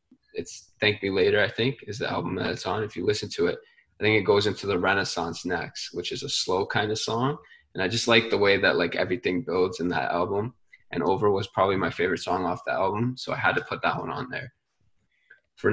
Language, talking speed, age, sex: English, 250 wpm, 20-39, male